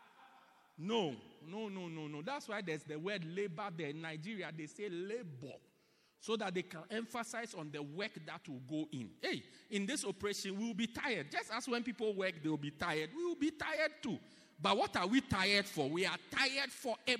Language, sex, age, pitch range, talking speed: English, male, 50-69, 170-245 Hz, 205 wpm